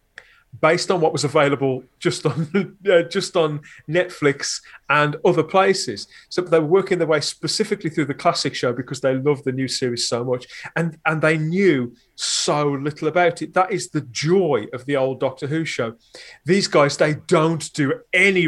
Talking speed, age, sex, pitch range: 185 wpm, 30-49, male, 140-180 Hz